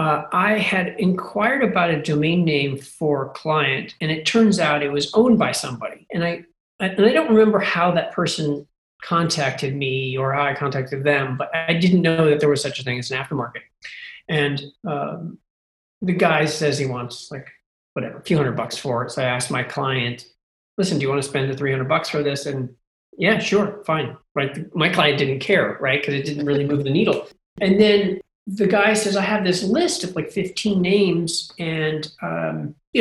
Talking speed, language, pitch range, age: 205 wpm, English, 140-190 Hz, 40-59